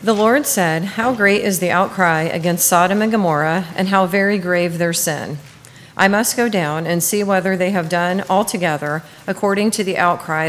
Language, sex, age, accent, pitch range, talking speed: English, female, 40-59, American, 155-195 Hz, 190 wpm